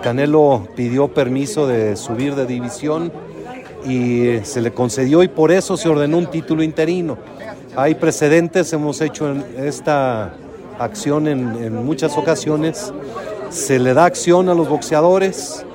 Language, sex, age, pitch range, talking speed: Spanish, male, 40-59, 130-170 Hz, 135 wpm